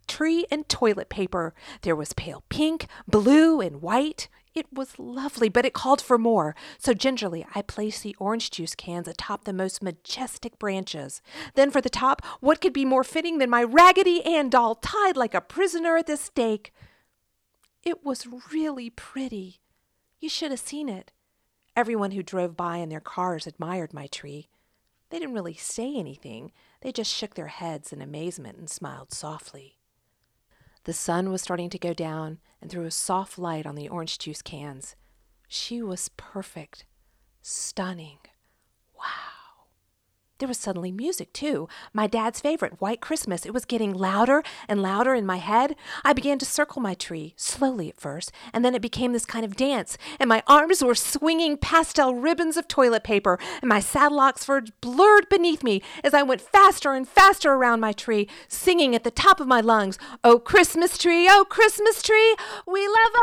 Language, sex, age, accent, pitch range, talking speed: English, female, 40-59, American, 185-295 Hz, 175 wpm